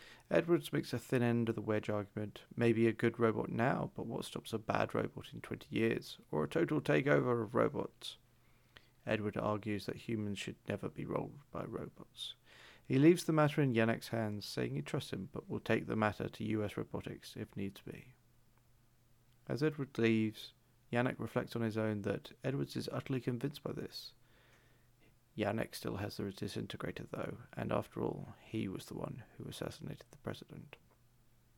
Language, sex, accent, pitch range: English, male, British, 110-125 Hz